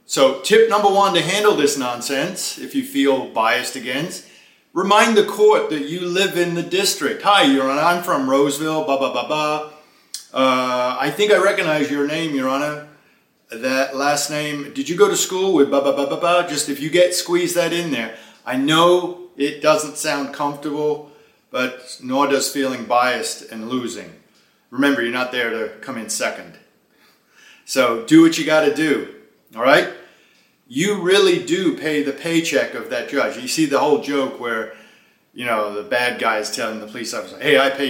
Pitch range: 140-185 Hz